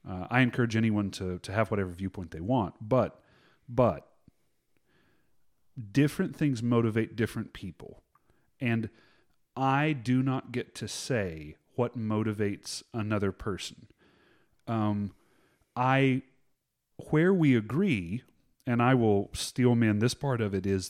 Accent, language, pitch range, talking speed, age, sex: American, English, 100-125 Hz, 125 wpm, 30-49, male